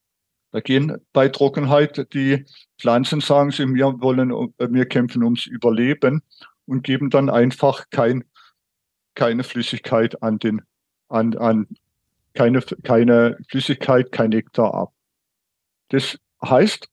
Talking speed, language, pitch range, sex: 115 wpm, German, 115-140 Hz, male